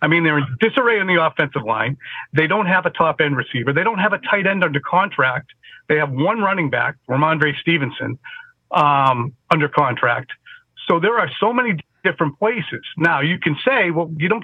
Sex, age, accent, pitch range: male, 40-59, American, 150-195 Hz